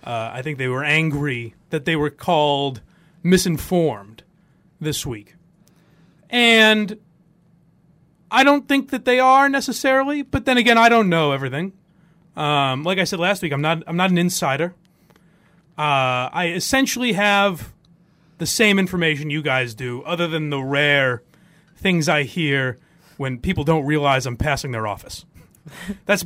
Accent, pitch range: American, 155-200 Hz